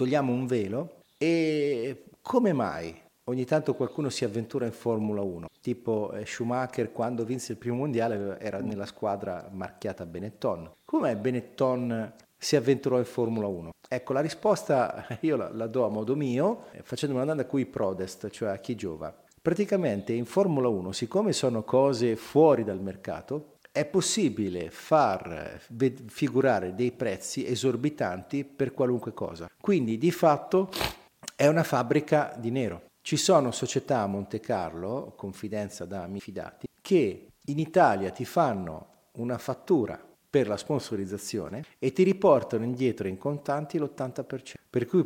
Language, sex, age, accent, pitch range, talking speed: Italian, male, 40-59, native, 110-140 Hz, 145 wpm